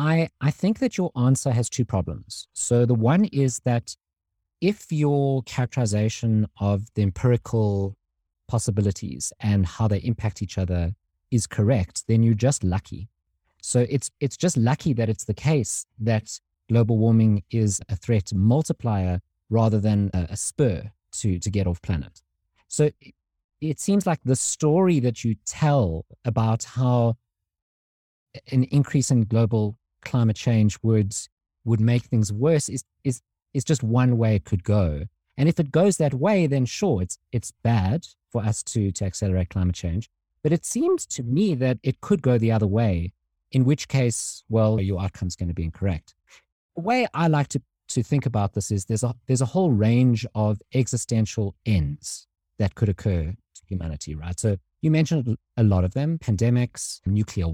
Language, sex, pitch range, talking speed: English, male, 95-130 Hz, 170 wpm